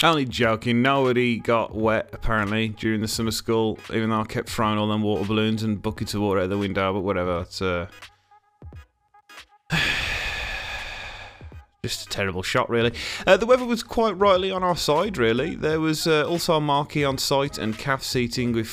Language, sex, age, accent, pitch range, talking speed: English, male, 30-49, British, 105-135 Hz, 185 wpm